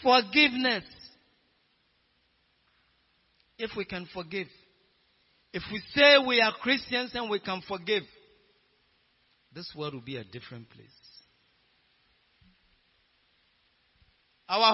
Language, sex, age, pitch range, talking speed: English, male, 50-69, 110-175 Hz, 95 wpm